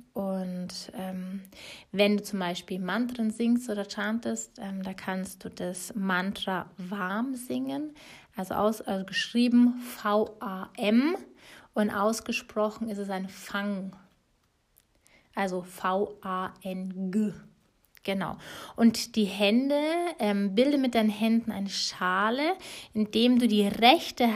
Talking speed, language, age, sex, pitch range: 115 wpm, German, 30-49, female, 195-235 Hz